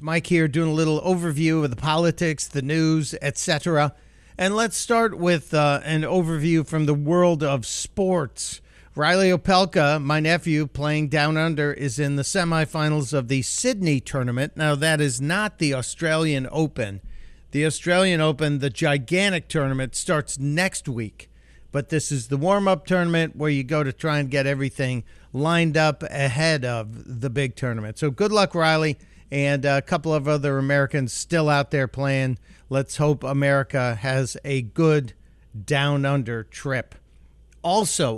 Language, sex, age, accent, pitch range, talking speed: English, male, 50-69, American, 135-165 Hz, 155 wpm